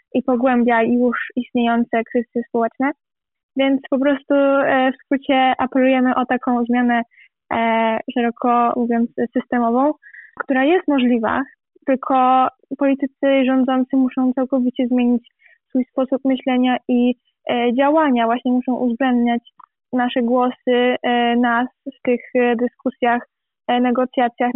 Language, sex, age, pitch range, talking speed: Polish, female, 10-29, 240-265 Hz, 105 wpm